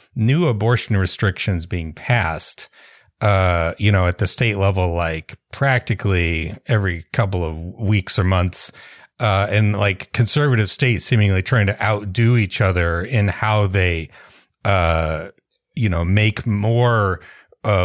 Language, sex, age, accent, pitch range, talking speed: English, male, 30-49, American, 95-120 Hz, 135 wpm